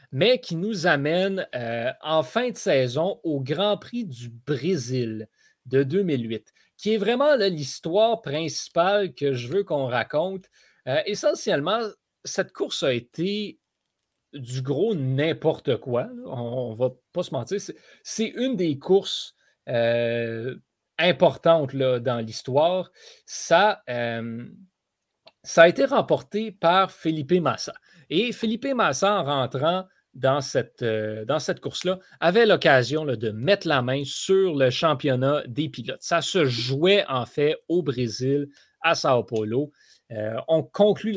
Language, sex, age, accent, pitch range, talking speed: French, male, 30-49, Canadian, 130-190 Hz, 145 wpm